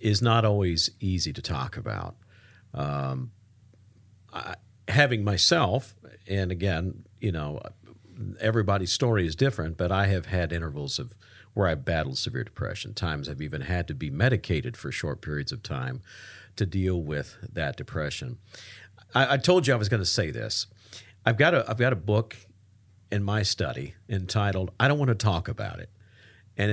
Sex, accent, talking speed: male, American, 175 wpm